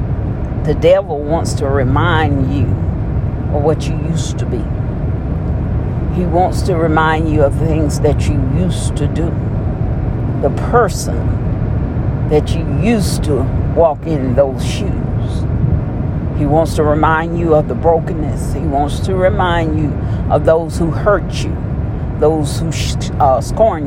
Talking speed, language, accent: 140 wpm, English, American